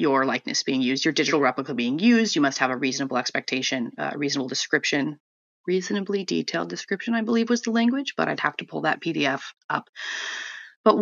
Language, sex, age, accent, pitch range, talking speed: English, female, 30-49, American, 145-190 Hz, 190 wpm